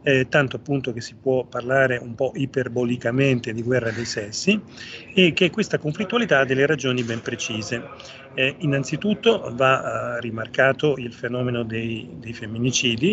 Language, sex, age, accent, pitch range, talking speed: Italian, male, 40-59, native, 120-150 Hz, 150 wpm